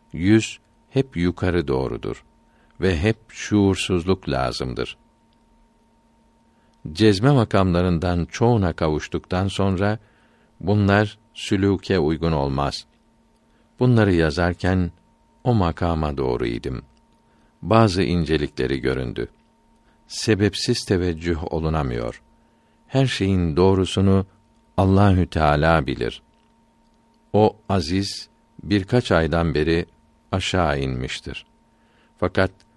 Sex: male